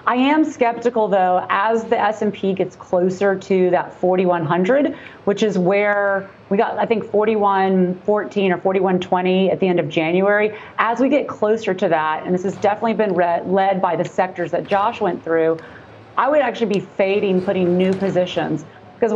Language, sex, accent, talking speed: English, female, American, 175 wpm